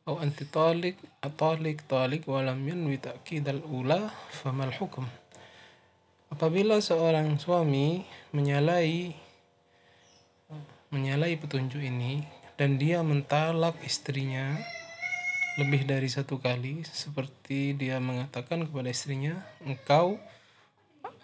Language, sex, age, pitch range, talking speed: Indonesian, male, 20-39, 135-160 Hz, 75 wpm